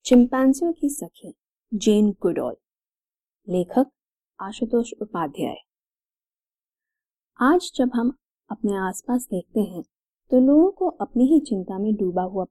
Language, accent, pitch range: English, Indian, 180-260 Hz